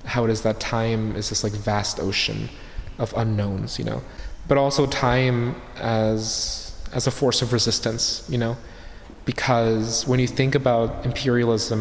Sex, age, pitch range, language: male, 20-39, 110-125 Hz, English